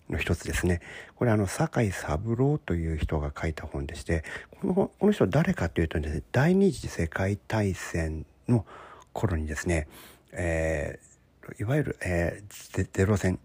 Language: Japanese